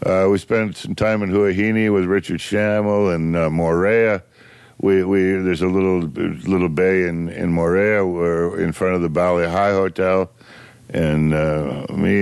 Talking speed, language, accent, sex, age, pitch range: 165 wpm, English, American, male, 60-79, 75-100 Hz